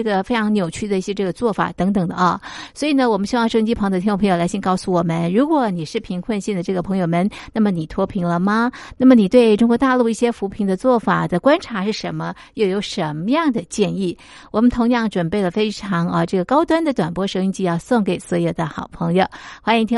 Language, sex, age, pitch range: Chinese, female, 50-69, 180-245 Hz